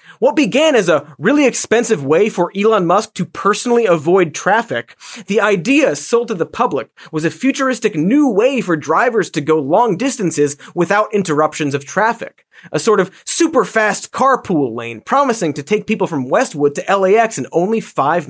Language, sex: English, male